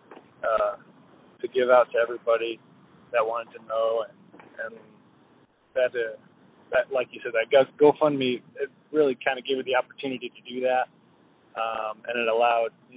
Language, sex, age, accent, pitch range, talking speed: English, male, 20-39, American, 120-150 Hz, 165 wpm